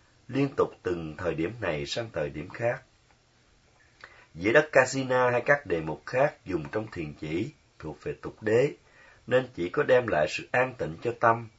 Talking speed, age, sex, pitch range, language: 185 wpm, 30-49, male, 90-130 Hz, Vietnamese